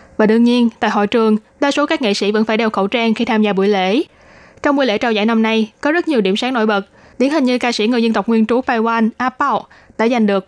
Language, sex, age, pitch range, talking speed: Vietnamese, female, 20-39, 215-260 Hz, 285 wpm